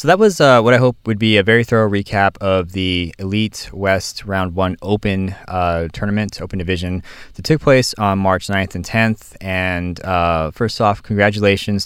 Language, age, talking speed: English, 20-39, 185 wpm